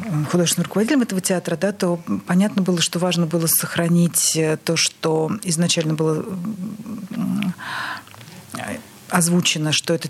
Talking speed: 115 wpm